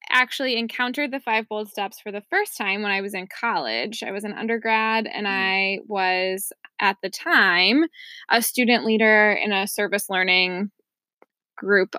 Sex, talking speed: female, 165 wpm